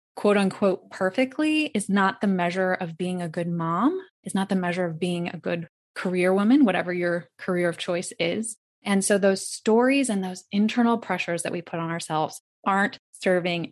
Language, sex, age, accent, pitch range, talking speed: English, female, 20-39, American, 180-230 Hz, 190 wpm